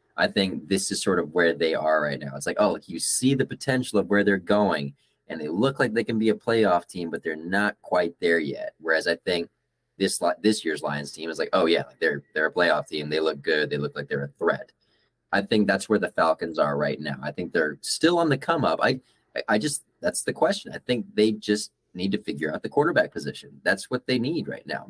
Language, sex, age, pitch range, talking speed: English, male, 20-39, 85-125 Hz, 255 wpm